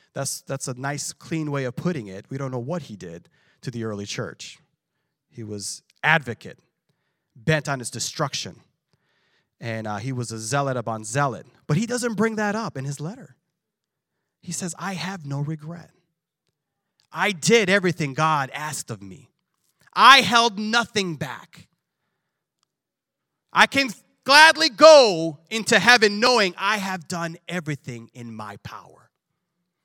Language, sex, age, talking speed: English, male, 30-49, 150 wpm